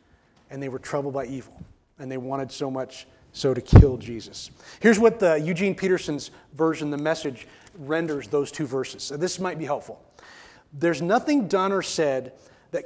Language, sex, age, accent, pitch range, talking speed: English, male, 30-49, American, 155-220 Hz, 175 wpm